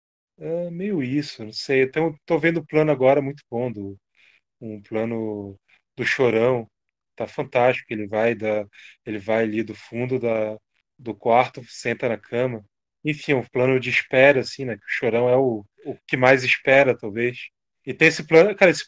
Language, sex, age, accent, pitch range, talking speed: Portuguese, male, 20-39, Brazilian, 110-130 Hz, 180 wpm